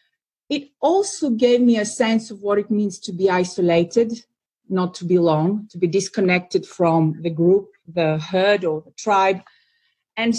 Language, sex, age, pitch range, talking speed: English, female, 40-59, 190-230 Hz, 160 wpm